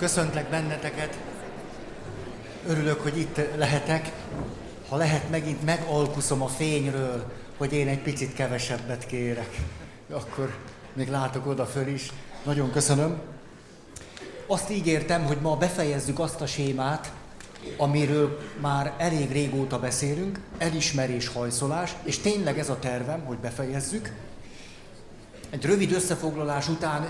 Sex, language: male, Hungarian